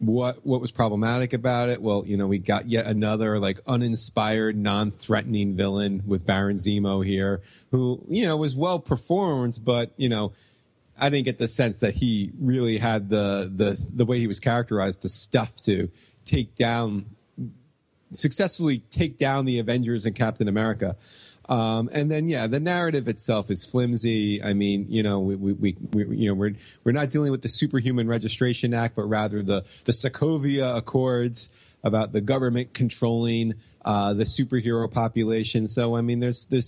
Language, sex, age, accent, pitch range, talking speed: English, male, 30-49, American, 105-125 Hz, 170 wpm